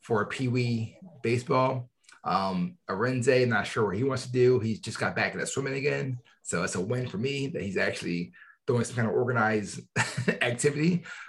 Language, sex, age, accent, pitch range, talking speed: English, male, 30-49, American, 110-130 Hz, 185 wpm